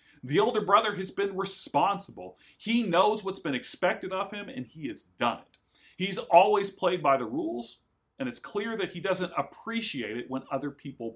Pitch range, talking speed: 135-195 Hz, 190 wpm